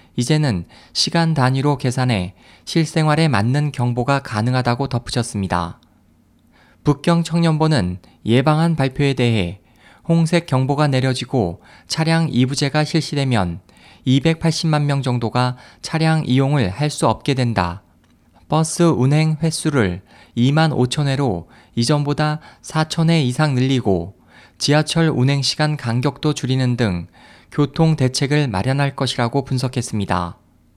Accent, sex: native, male